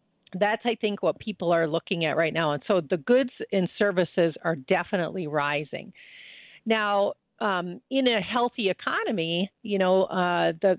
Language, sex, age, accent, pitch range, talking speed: English, female, 50-69, American, 165-220 Hz, 155 wpm